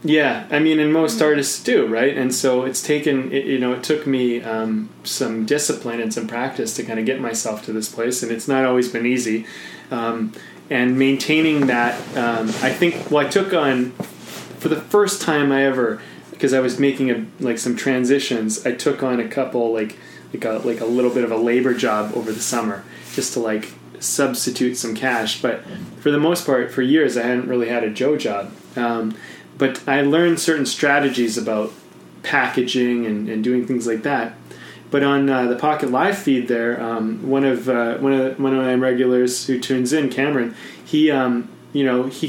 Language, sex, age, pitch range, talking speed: English, male, 20-39, 120-145 Hz, 205 wpm